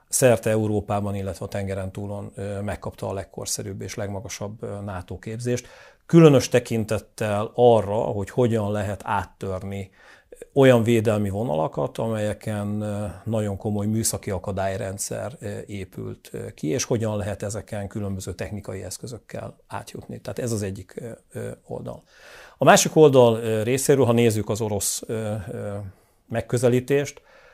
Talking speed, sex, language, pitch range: 115 wpm, male, Hungarian, 100-115 Hz